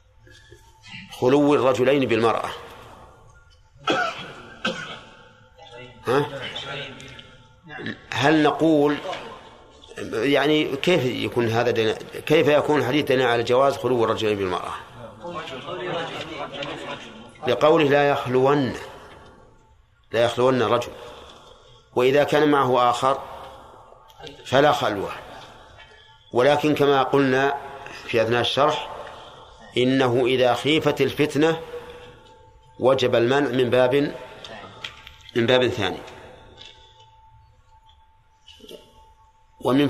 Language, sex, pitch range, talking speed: Arabic, male, 110-140 Hz, 70 wpm